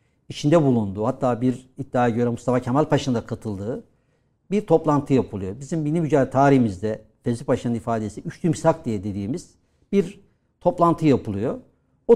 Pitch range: 120-160 Hz